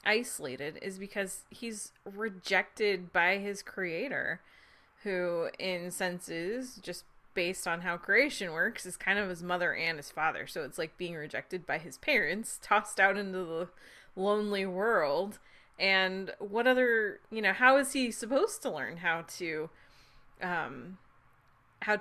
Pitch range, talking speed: 165-205 Hz, 145 wpm